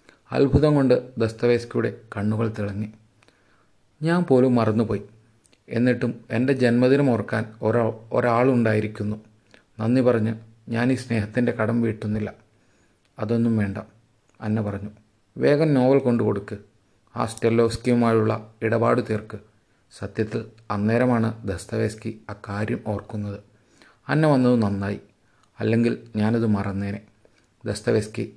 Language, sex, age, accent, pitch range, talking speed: Malayalam, male, 30-49, native, 105-120 Hz, 90 wpm